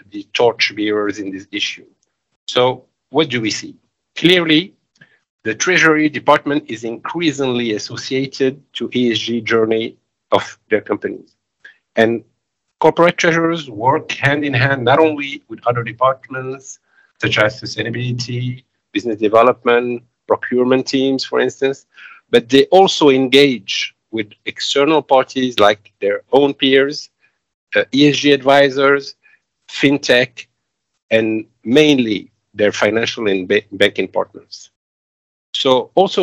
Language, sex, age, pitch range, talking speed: English, male, 50-69, 115-145 Hz, 110 wpm